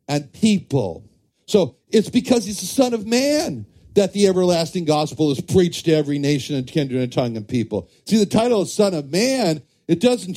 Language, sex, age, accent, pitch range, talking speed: English, male, 60-79, American, 130-180 Hz, 195 wpm